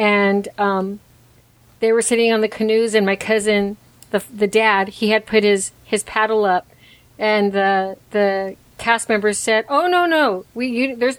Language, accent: English, American